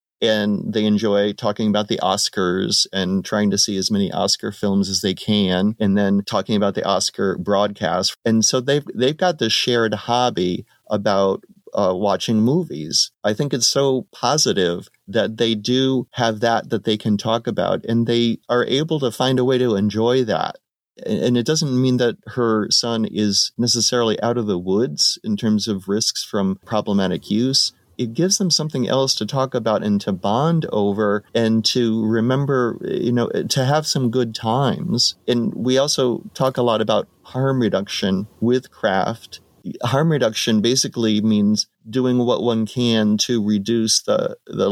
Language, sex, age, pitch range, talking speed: English, male, 30-49, 105-125 Hz, 170 wpm